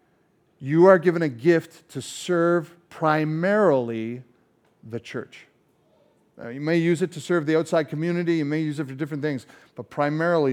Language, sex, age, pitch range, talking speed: English, male, 50-69, 130-170 Hz, 160 wpm